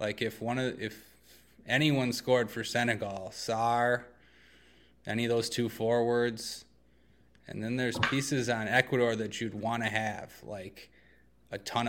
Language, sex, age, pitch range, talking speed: English, male, 20-39, 110-130 Hz, 145 wpm